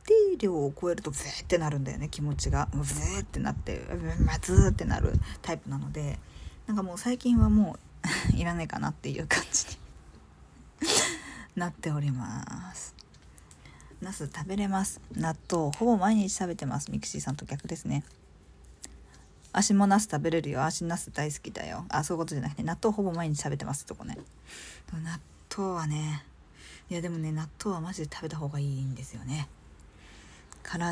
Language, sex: Japanese, female